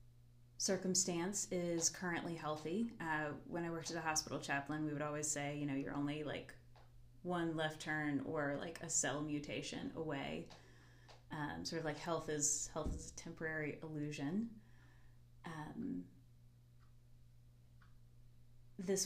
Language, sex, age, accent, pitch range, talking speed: English, female, 30-49, American, 125-165 Hz, 135 wpm